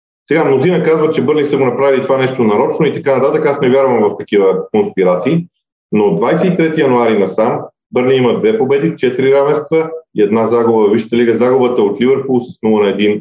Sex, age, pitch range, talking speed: male, 40-59, 120-175 Hz, 205 wpm